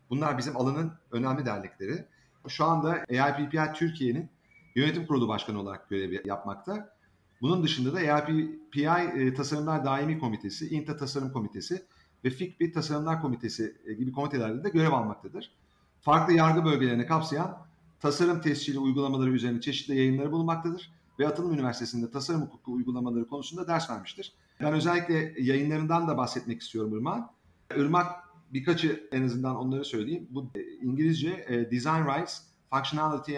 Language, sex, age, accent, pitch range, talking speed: Turkish, male, 40-59, native, 120-160 Hz, 130 wpm